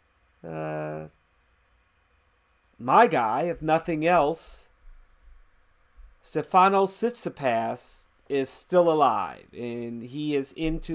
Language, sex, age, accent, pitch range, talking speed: English, male, 40-59, American, 115-165 Hz, 80 wpm